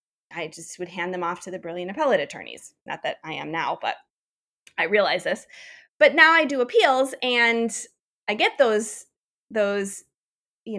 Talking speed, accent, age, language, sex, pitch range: 170 wpm, American, 20-39, English, female, 180-250 Hz